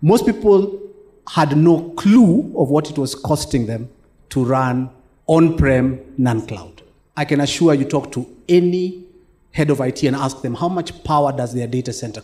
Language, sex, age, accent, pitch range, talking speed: English, male, 40-59, South African, 130-185 Hz, 170 wpm